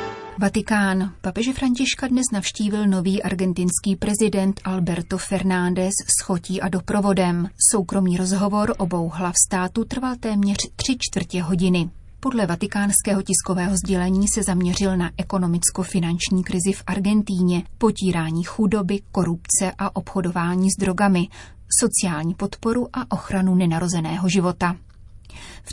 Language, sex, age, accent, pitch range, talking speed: Czech, female, 30-49, native, 180-200 Hz, 115 wpm